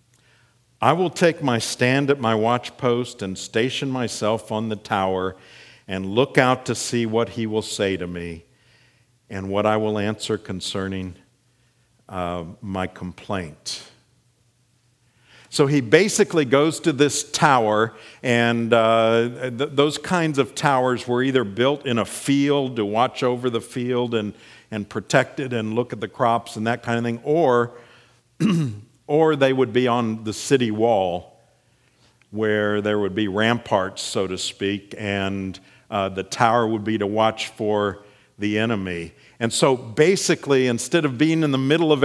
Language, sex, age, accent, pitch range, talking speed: English, male, 50-69, American, 110-130 Hz, 160 wpm